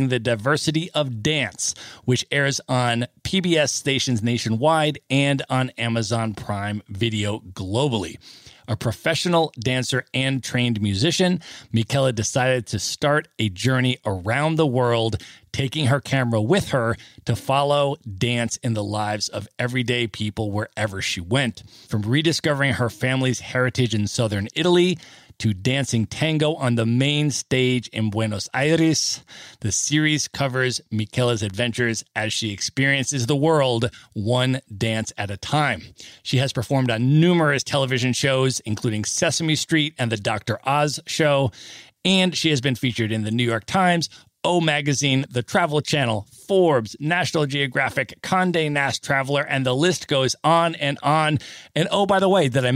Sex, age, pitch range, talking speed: male, 40-59, 115-150 Hz, 150 wpm